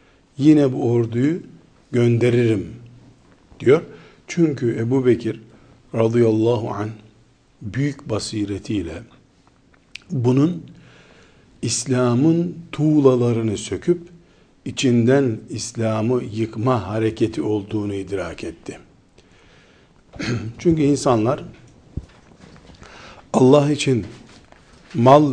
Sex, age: male, 60-79